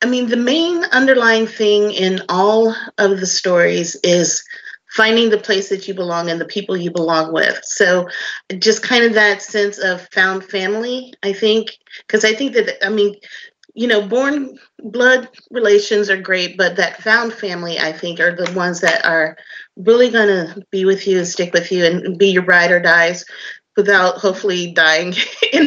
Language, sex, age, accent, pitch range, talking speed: English, female, 30-49, American, 175-225 Hz, 185 wpm